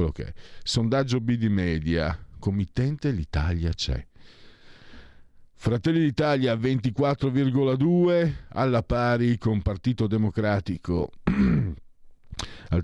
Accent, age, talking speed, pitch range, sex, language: native, 50-69, 75 wpm, 80-110 Hz, male, Italian